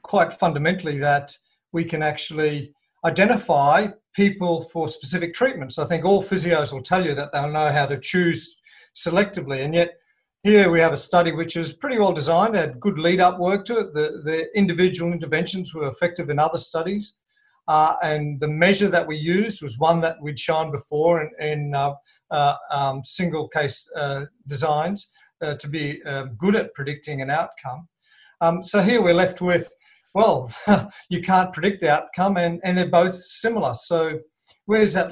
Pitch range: 150-185 Hz